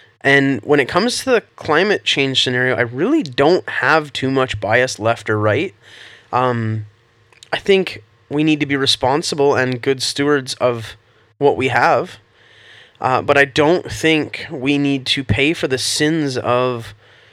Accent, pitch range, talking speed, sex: American, 120-155 Hz, 165 wpm, male